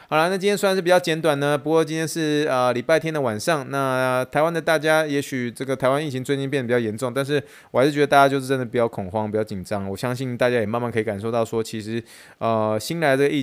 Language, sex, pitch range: Chinese, male, 105-135 Hz